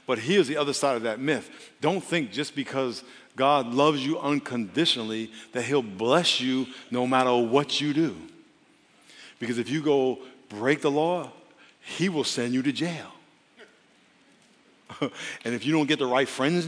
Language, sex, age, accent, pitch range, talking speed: English, male, 50-69, American, 135-185 Hz, 165 wpm